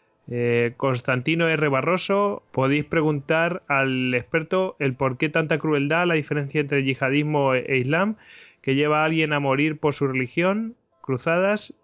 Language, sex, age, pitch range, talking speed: Spanish, male, 30-49, 130-160 Hz, 140 wpm